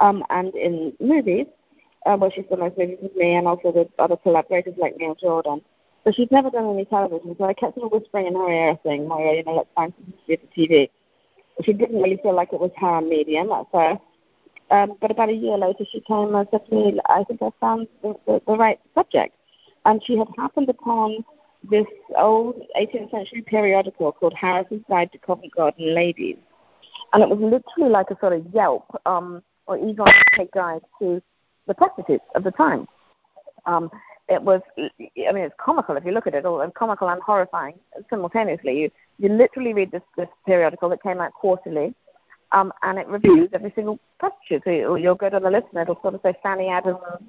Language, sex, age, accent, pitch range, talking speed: English, female, 40-59, British, 175-220 Hz, 210 wpm